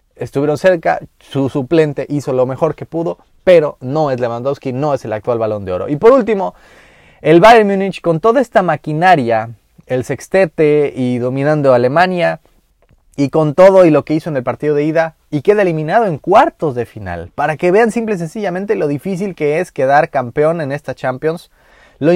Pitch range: 130-175 Hz